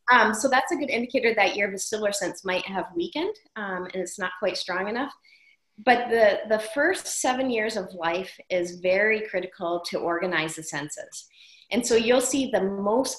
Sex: female